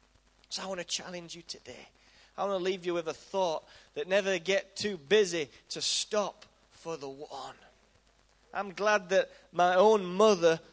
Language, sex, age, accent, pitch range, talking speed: English, male, 20-39, British, 185-240 Hz, 175 wpm